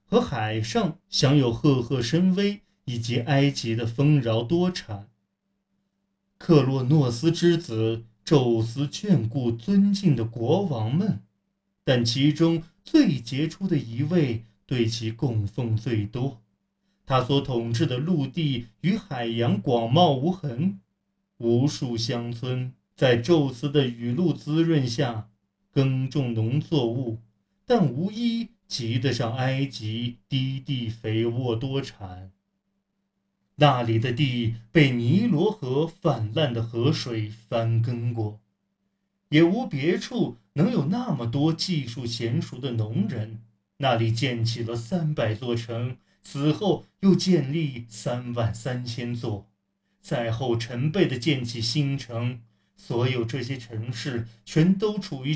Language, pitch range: Chinese, 115-165 Hz